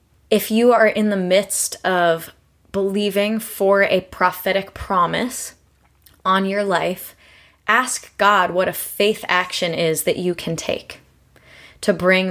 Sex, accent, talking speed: female, American, 135 wpm